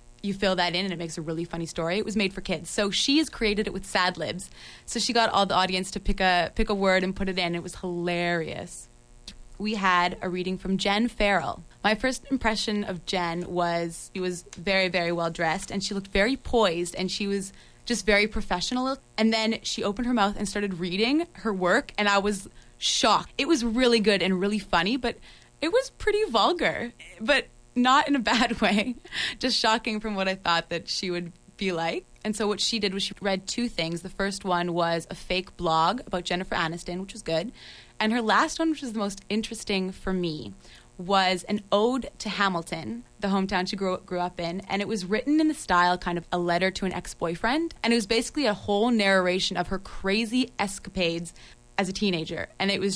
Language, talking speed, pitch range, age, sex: English, 220 wpm, 180-220 Hz, 20-39, female